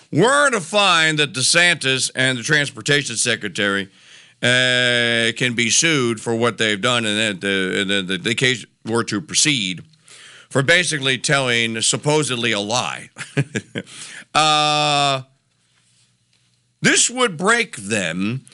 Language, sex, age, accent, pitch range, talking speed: English, male, 50-69, American, 115-170 Hz, 115 wpm